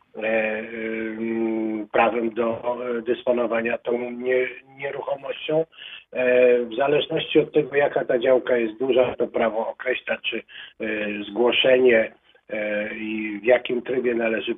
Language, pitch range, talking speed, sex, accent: Polish, 115-155 Hz, 125 wpm, male, native